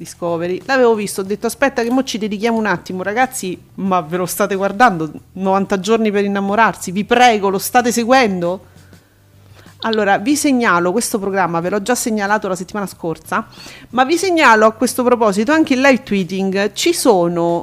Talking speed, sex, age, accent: 175 wpm, female, 40-59, native